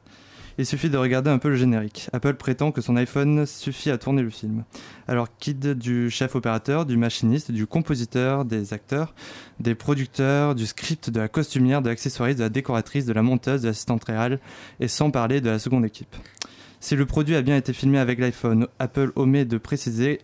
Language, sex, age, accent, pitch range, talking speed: French, male, 20-39, French, 115-135 Hz, 200 wpm